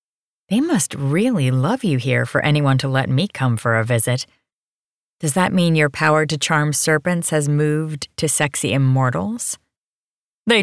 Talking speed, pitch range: 165 wpm, 130-160 Hz